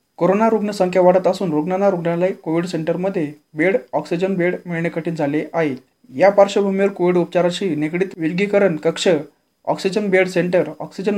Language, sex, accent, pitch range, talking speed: Marathi, male, native, 160-190 Hz, 140 wpm